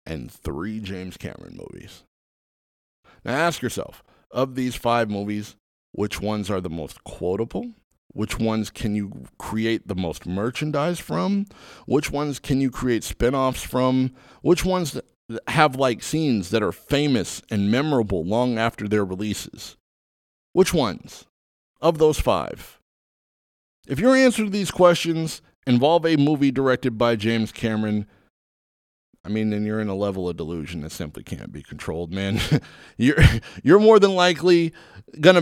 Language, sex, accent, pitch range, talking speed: English, male, American, 100-145 Hz, 145 wpm